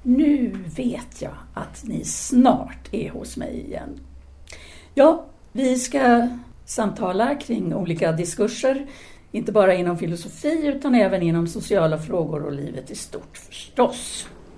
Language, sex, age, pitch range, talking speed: Swedish, female, 60-79, 175-255 Hz, 130 wpm